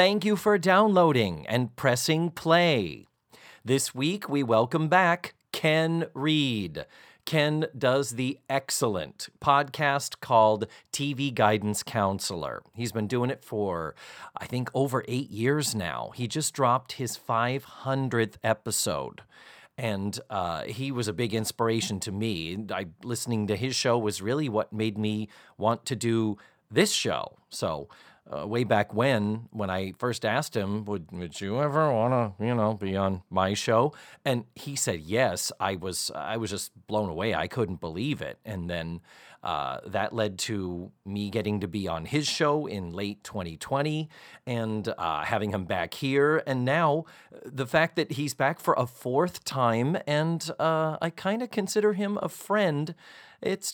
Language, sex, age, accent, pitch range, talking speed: English, male, 40-59, American, 105-150 Hz, 160 wpm